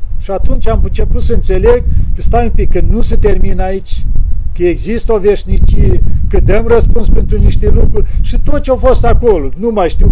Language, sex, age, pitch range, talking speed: Romanian, male, 50-69, 190-235 Hz, 200 wpm